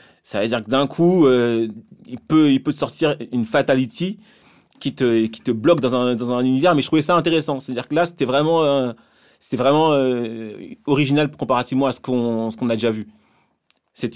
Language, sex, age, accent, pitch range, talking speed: French, male, 30-49, French, 125-160 Hz, 210 wpm